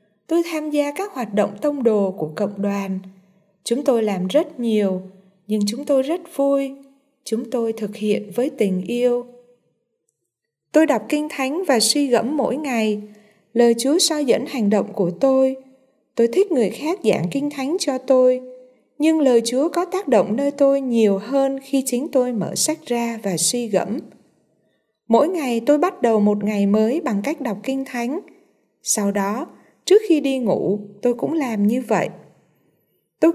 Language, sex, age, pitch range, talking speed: Vietnamese, female, 20-39, 210-275 Hz, 175 wpm